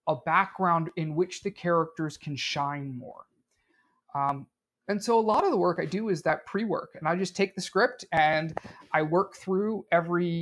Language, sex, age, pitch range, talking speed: English, male, 30-49, 150-190 Hz, 190 wpm